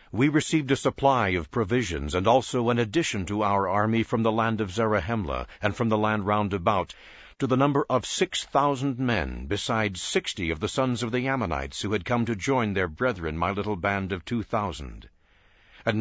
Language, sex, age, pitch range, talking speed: English, male, 60-79, 95-125 Hz, 200 wpm